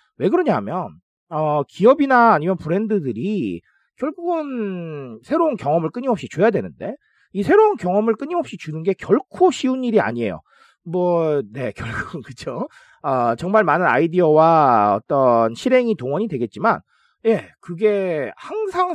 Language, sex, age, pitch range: Korean, male, 40-59, 170-255 Hz